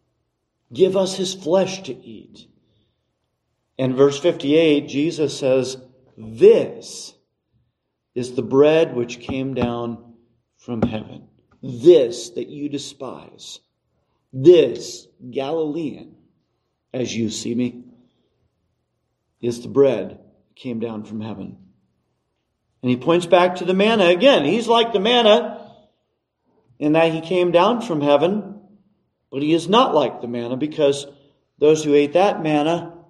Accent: American